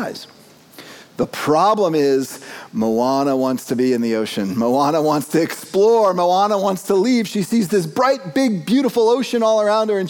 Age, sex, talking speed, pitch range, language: 40-59, male, 170 wpm, 125-195 Hz, English